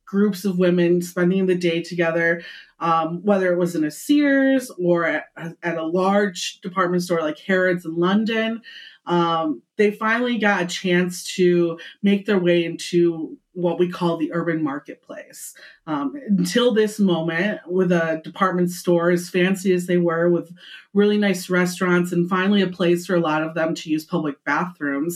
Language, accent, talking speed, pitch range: English, American, 170 wpm, 170-210 Hz